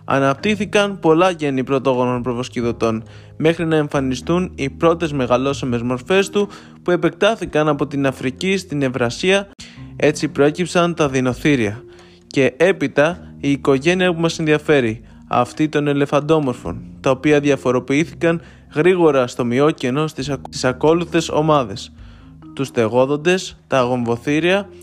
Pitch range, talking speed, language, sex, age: 125-165 Hz, 115 wpm, Greek, male, 20-39